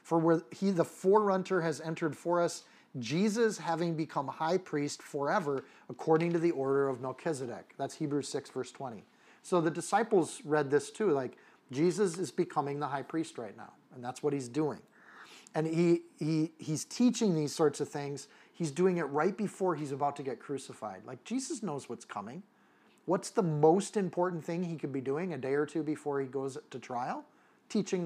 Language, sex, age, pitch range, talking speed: English, male, 40-59, 140-175 Hz, 190 wpm